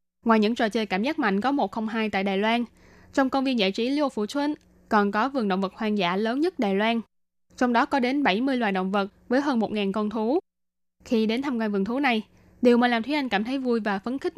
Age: 10-29